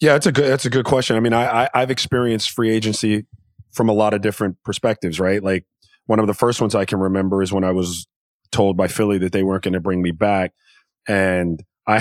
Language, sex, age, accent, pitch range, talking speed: English, male, 30-49, American, 100-115 Hz, 245 wpm